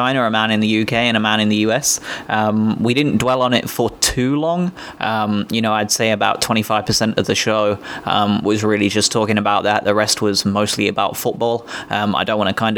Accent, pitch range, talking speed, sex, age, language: British, 105-120 Hz, 235 wpm, male, 20-39, English